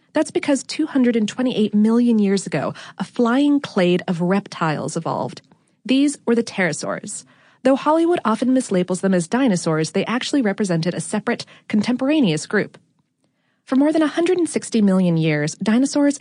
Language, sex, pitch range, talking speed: English, female, 185-255 Hz, 135 wpm